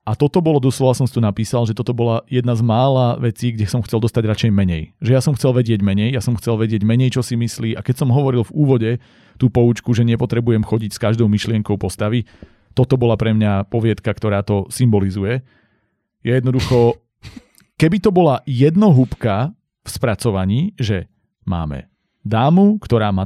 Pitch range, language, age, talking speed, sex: 105-130 Hz, Slovak, 40-59, 185 wpm, male